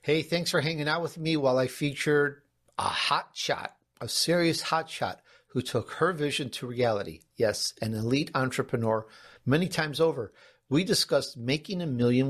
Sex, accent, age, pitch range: male, American, 50-69, 120-155 Hz